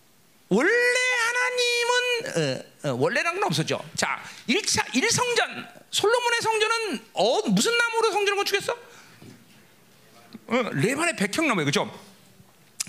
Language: Korean